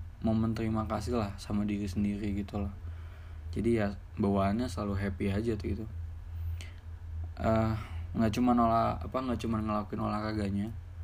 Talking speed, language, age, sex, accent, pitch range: 145 wpm, Indonesian, 20-39, male, native, 85-105 Hz